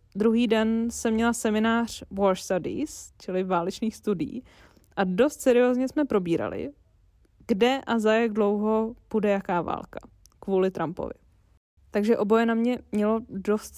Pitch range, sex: 195-230 Hz, female